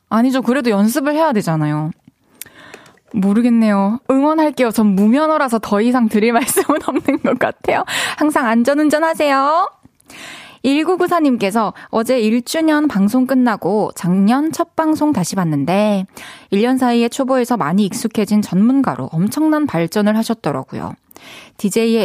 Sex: female